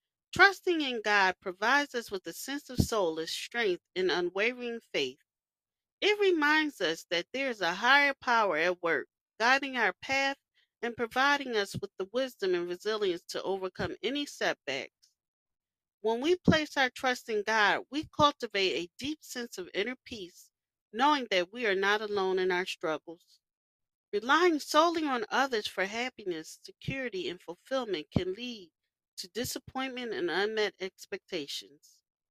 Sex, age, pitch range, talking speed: female, 40-59, 195-295 Hz, 150 wpm